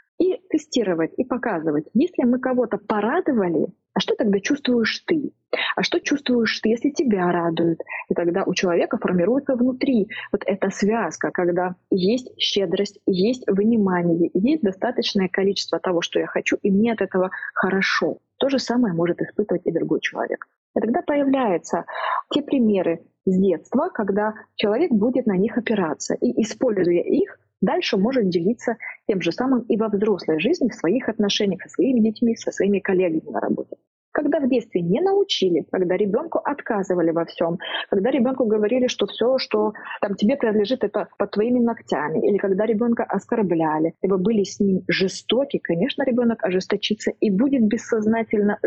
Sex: female